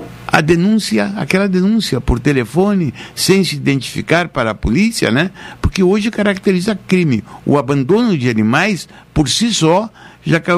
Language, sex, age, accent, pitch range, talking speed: Portuguese, male, 60-79, Brazilian, 140-205 Hz, 140 wpm